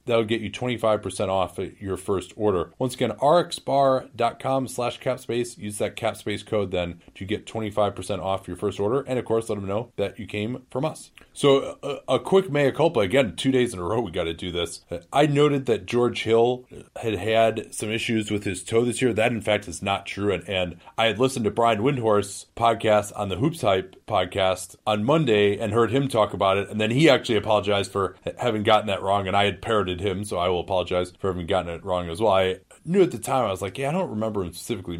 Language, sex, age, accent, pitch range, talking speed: English, male, 30-49, American, 90-115 Hz, 235 wpm